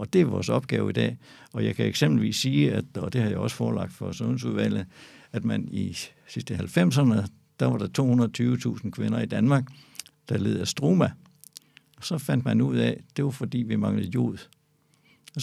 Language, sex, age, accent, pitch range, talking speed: Danish, male, 60-79, native, 110-145 Hz, 195 wpm